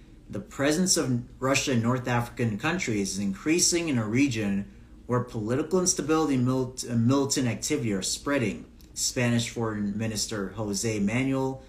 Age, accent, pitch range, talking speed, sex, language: 30-49, American, 100-125 Hz, 140 wpm, male, English